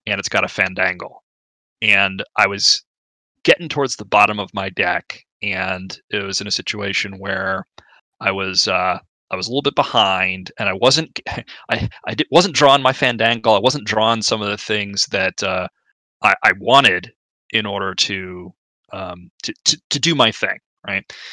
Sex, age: male, 20-39